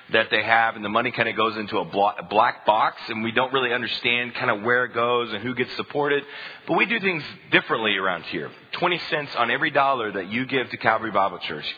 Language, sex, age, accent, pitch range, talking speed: English, male, 30-49, American, 110-130 Hz, 235 wpm